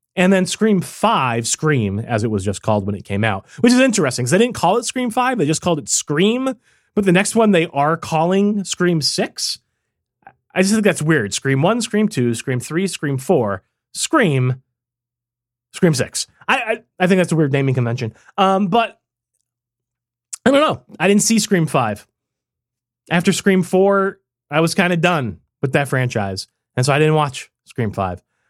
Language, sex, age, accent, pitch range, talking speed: English, male, 30-49, American, 125-195 Hz, 190 wpm